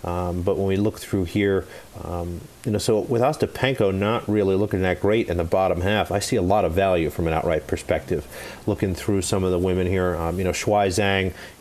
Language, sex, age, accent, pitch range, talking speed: English, male, 40-59, American, 90-105 Hz, 235 wpm